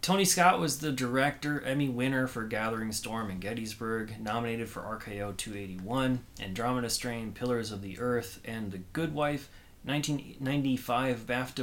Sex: male